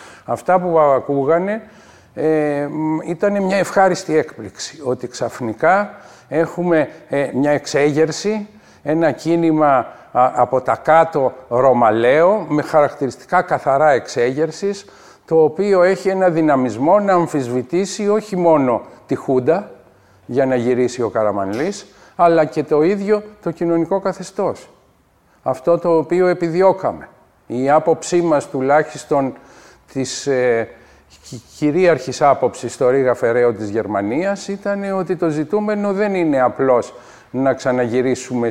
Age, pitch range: 50-69, 130-185 Hz